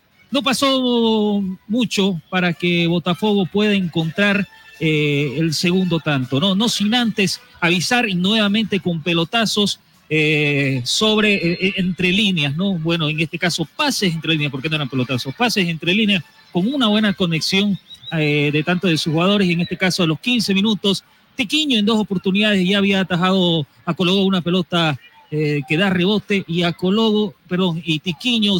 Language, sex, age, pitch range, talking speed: Spanish, male, 40-59, 170-205 Hz, 165 wpm